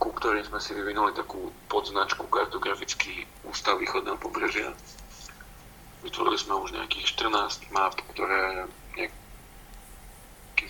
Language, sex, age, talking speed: Slovak, male, 40-59, 105 wpm